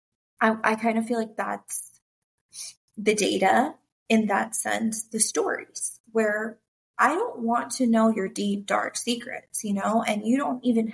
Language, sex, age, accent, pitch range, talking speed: English, female, 20-39, American, 200-235 Hz, 165 wpm